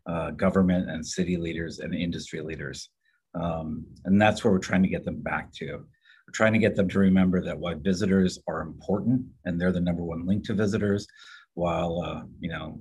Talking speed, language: 200 wpm, English